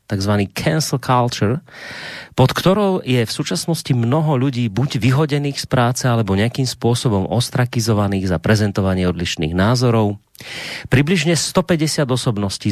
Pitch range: 105-135 Hz